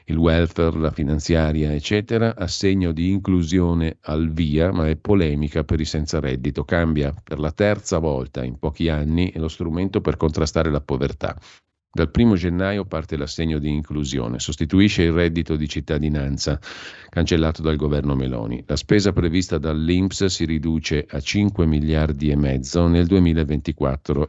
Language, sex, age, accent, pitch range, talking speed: Italian, male, 50-69, native, 75-90 Hz, 150 wpm